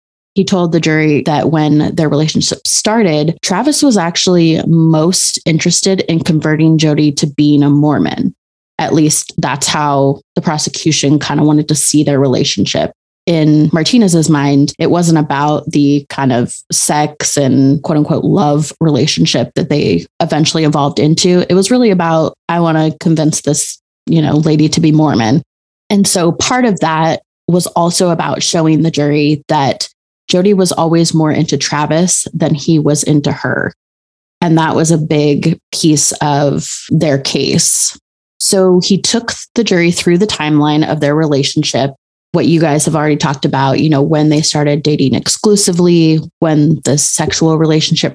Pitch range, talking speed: 145-170 Hz, 160 wpm